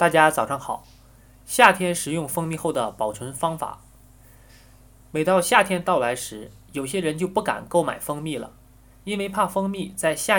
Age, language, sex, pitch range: 20-39, Chinese, male, 120-185 Hz